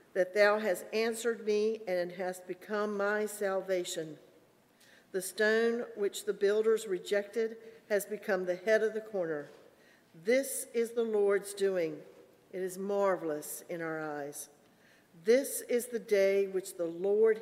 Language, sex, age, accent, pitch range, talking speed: English, female, 50-69, American, 175-220 Hz, 140 wpm